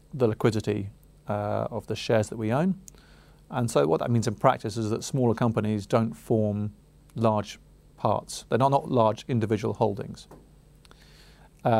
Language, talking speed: English, 155 wpm